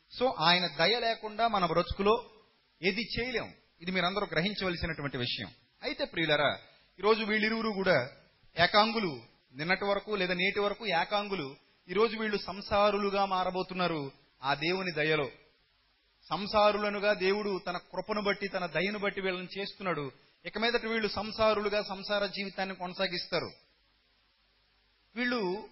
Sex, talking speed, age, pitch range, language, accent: male, 115 wpm, 30-49, 170-220 Hz, Telugu, native